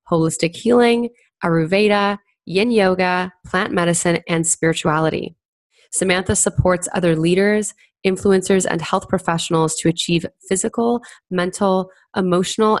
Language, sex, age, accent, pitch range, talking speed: English, female, 20-39, American, 165-195 Hz, 105 wpm